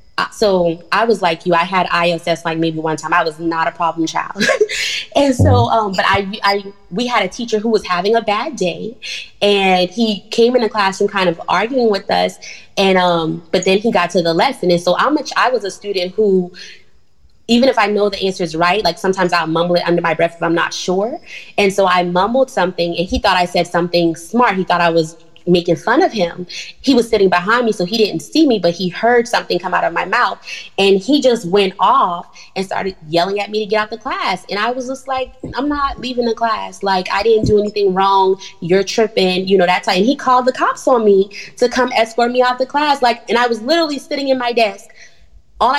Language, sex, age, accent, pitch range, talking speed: English, female, 20-39, American, 180-235 Hz, 240 wpm